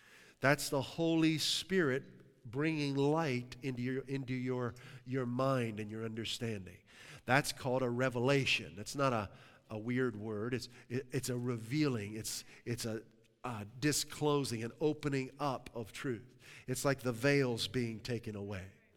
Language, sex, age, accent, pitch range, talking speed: English, male, 50-69, American, 125-150 Hz, 150 wpm